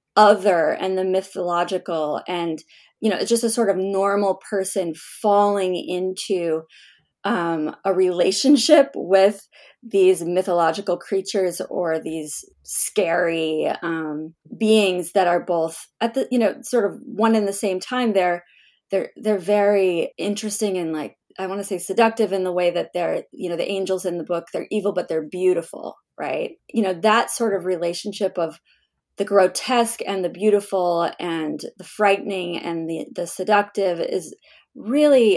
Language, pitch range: English, 175-215 Hz